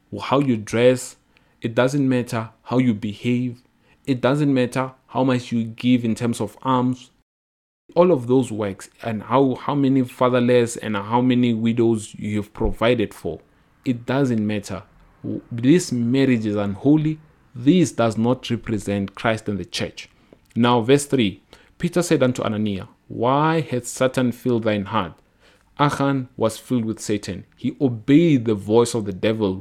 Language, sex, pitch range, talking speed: English, male, 115-145 Hz, 155 wpm